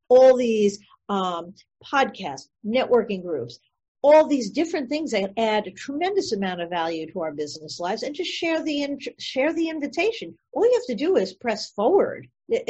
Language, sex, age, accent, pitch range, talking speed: English, female, 50-69, American, 185-265 Hz, 170 wpm